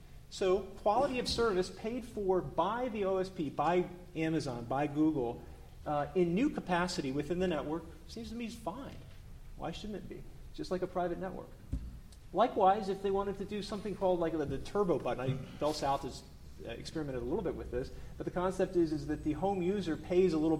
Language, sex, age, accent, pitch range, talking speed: English, male, 40-59, American, 130-180 Hz, 205 wpm